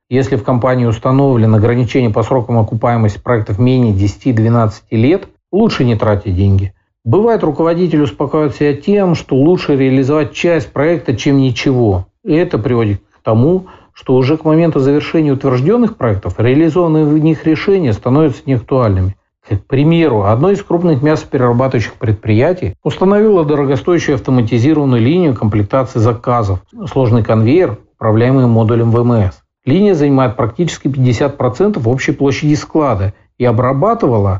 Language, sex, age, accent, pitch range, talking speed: Russian, male, 50-69, native, 115-155 Hz, 125 wpm